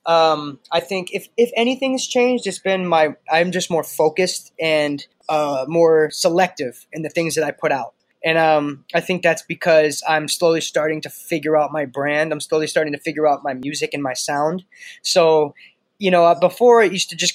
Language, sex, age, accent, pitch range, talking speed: English, male, 20-39, American, 150-180 Hz, 205 wpm